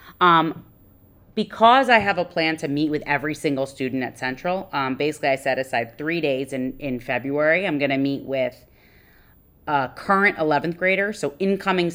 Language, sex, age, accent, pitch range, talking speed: English, female, 30-49, American, 130-165 Hz, 170 wpm